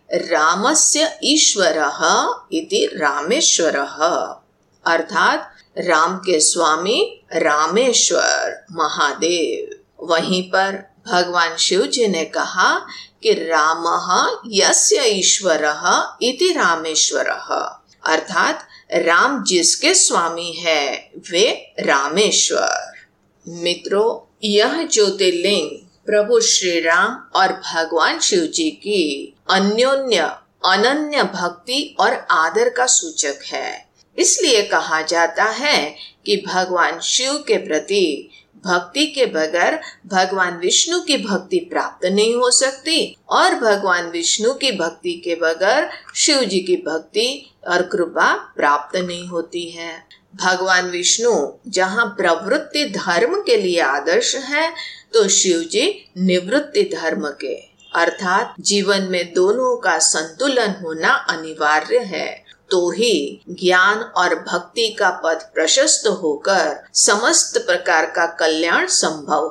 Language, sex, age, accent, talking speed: Hindi, female, 50-69, native, 110 wpm